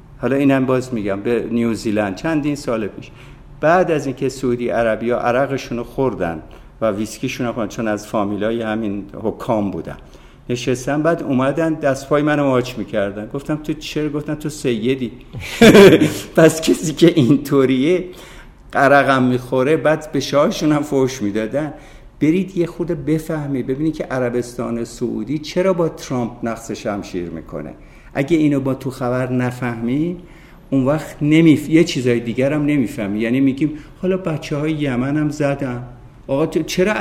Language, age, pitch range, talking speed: Persian, 60-79, 120-160 Hz, 145 wpm